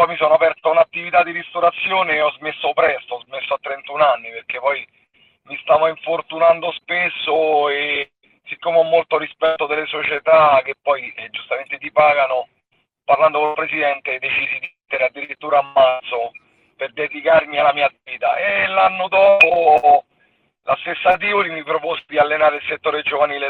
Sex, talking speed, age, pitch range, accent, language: male, 160 wpm, 40-59, 140-170 Hz, native, Italian